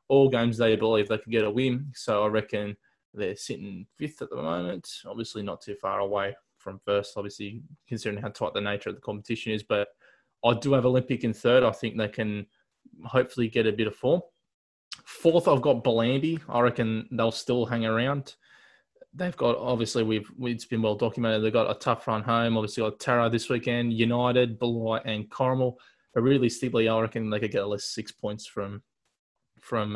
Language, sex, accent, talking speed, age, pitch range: English, male, Australian, 200 wpm, 20-39, 110-125 Hz